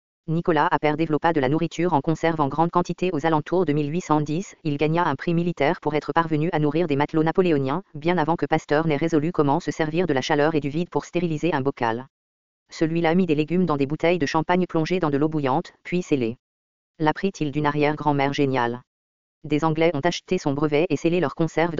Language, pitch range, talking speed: English, 145-170 Hz, 215 wpm